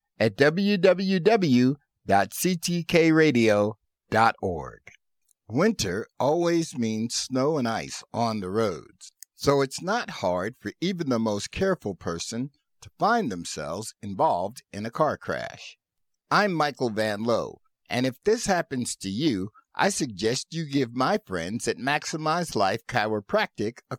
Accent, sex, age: American, male, 60-79